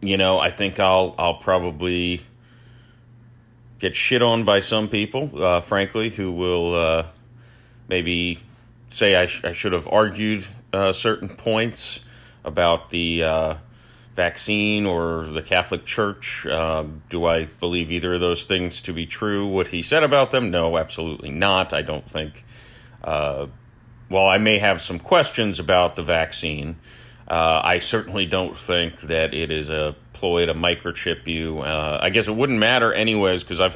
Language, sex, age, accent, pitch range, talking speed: English, male, 30-49, American, 85-115 Hz, 165 wpm